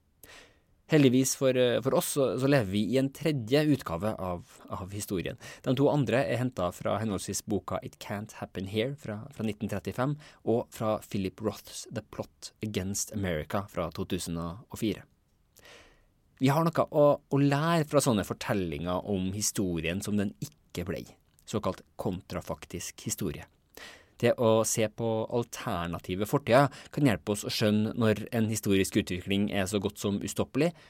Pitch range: 95-125 Hz